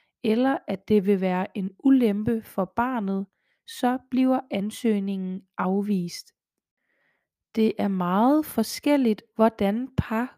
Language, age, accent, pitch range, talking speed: Danish, 20-39, native, 195-245 Hz, 110 wpm